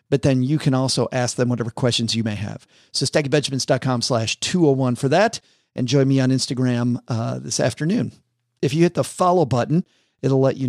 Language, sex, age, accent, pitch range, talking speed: English, male, 50-69, American, 125-165 Hz, 195 wpm